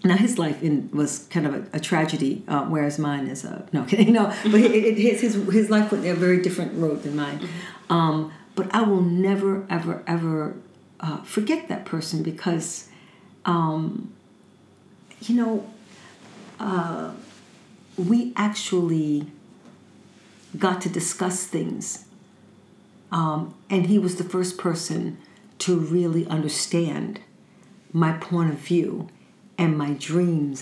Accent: American